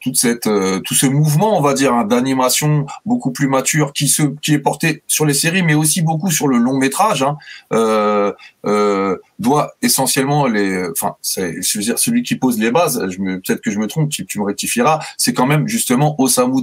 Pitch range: 110-185 Hz